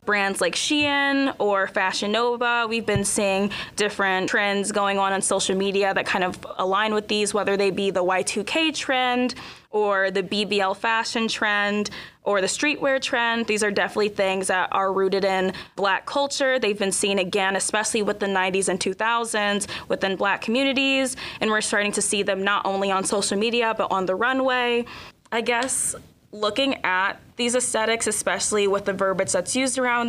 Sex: female